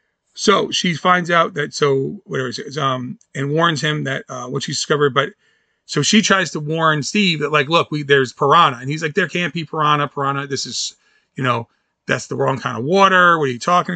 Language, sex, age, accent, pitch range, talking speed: English, male, 30-49, American, 145-180 Hz, 230 wpm